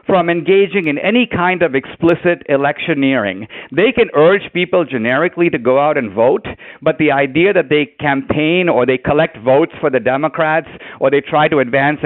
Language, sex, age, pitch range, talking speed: English, male, 50-69, 155-220 Hz, 180 wpm